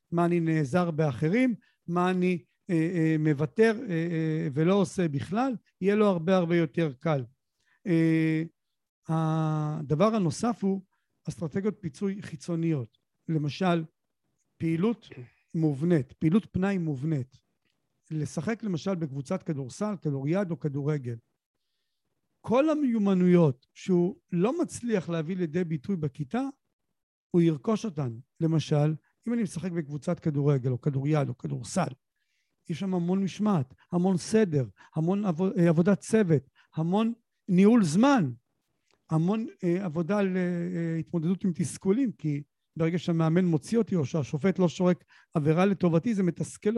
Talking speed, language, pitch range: 120 wpm, Hebrew, 155-195 Hz